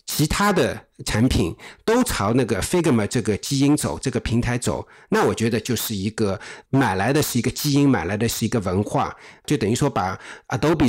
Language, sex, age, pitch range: Chinese, male, 50-69, 110-145 Hz